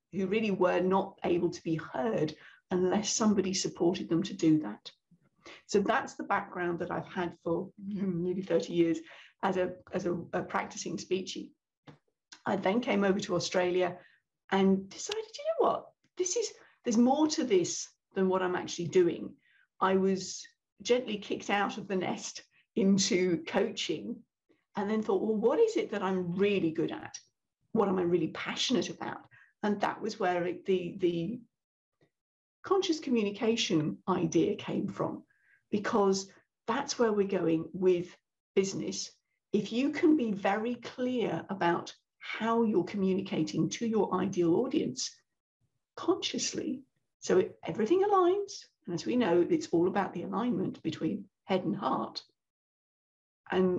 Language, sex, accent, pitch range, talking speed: English, female, British, 180-240 Hz, 150 wpm